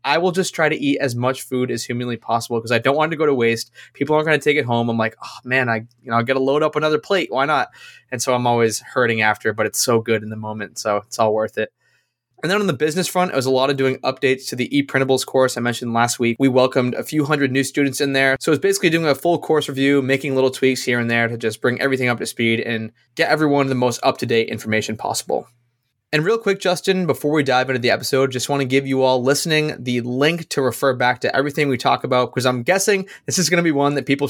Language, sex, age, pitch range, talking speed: English, male, 20-39, 120-155 Hz, 285 wpm